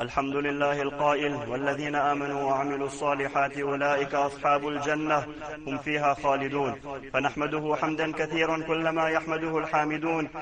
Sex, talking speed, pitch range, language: male, 110 wpm, 145-170 Hz, English